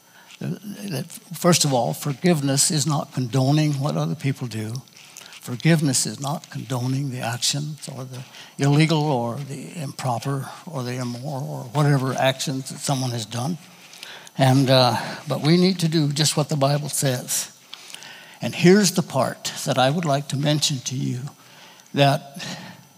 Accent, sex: American, male